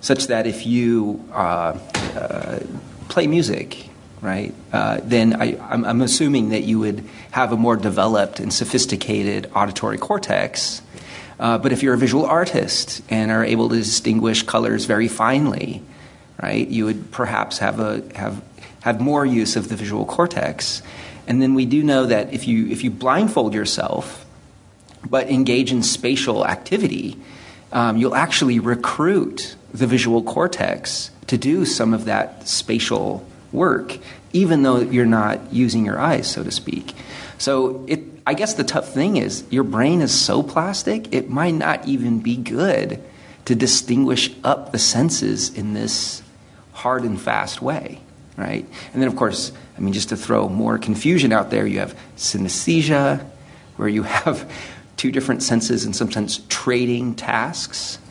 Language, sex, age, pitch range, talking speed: English, male, 30-49, 110-130 Hz, 160 wpm